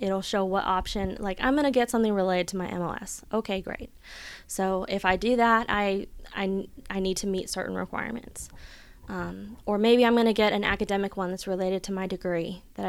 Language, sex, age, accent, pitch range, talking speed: English, female, 20-39, American, 185-210 Hz, 200 wpm